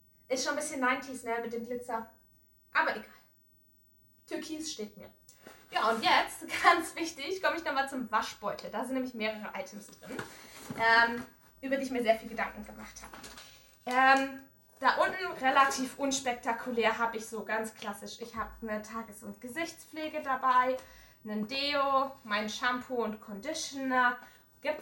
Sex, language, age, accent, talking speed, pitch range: female, German, 20-39, German, 155 wpm, 225-275 Hz